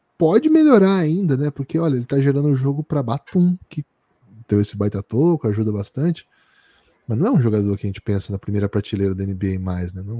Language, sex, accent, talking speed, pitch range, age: Portuguese, male, Brazilian, 225 wpm, 105-160 Hz, 10-29